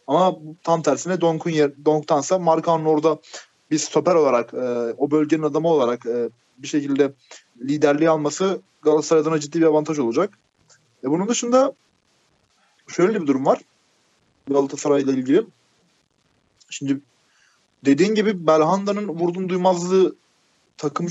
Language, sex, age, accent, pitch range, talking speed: Turkish, male, 30-49, native, 140-175 Hz, 120 wpm